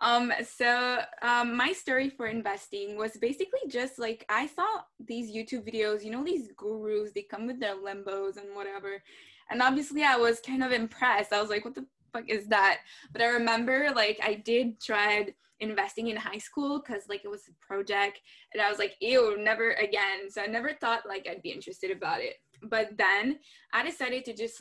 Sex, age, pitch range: female, 10-29, 205-250 Hz